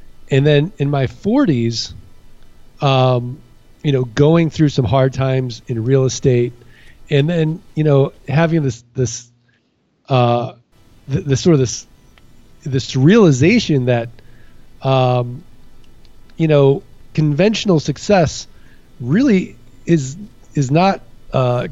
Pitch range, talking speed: 120-155 Hz, 115 wpm